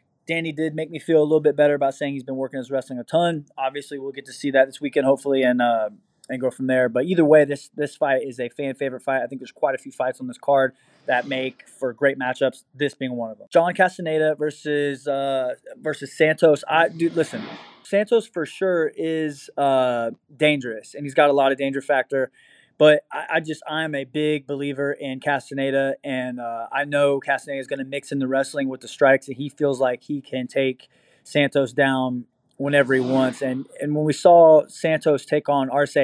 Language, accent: English, American